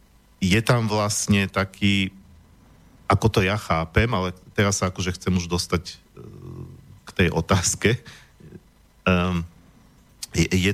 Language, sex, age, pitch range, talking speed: Slovak, male, 40-59, 90-100 Hz, 105 wpm